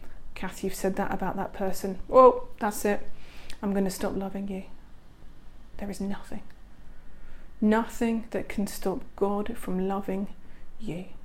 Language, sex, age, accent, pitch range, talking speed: English, female, 40-59, British, 195-225 Hz, 145 wpm